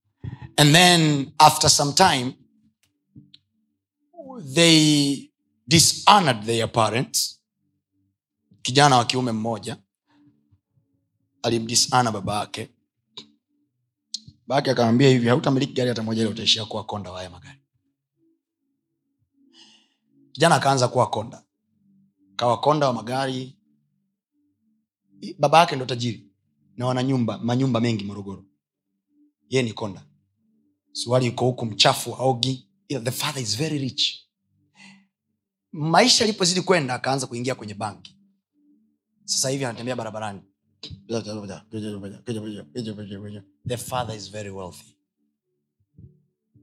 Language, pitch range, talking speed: Swahili, 105-150 Hz, 75 wpm